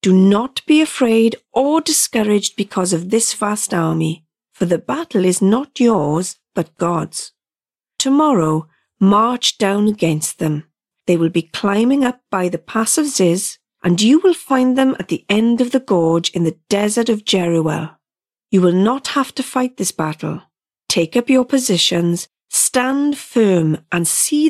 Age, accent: 40-59, British